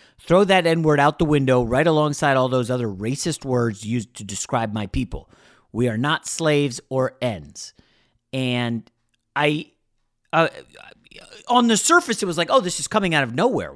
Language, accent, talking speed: English, American, 175 wpm